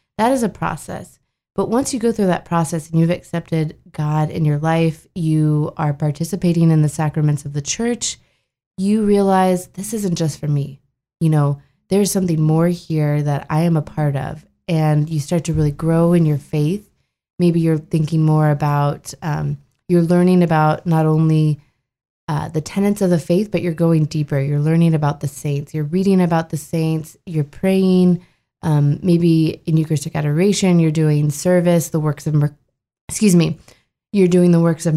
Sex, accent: female, American